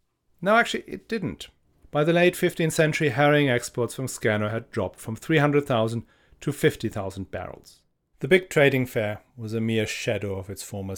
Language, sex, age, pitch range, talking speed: English, male, 40-59, 110-150 Hz, 170 wpm